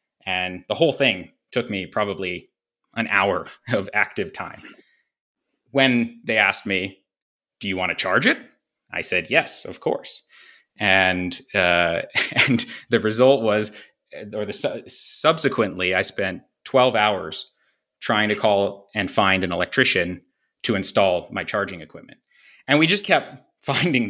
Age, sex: 30-49, male